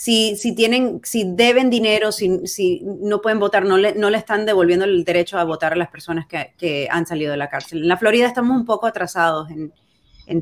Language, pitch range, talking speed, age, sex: Spanish, 175-215 Hz, 230 wpm, 30-49, female